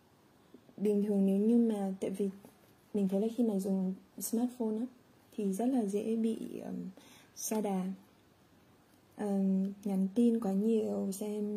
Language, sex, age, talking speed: Vietnamese, female, 20-39, 150 wpm